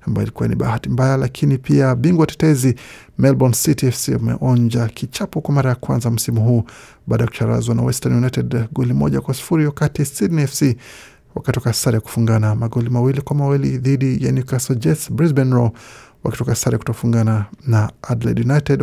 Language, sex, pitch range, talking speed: Swahili, male, 115-145 Hz, 155 wpm